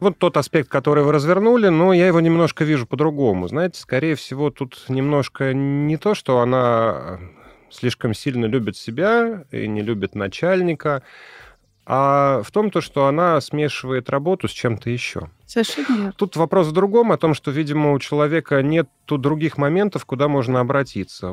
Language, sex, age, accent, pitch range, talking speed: Russian, male, 30-49, native, 115-160 Hz, 160 wpm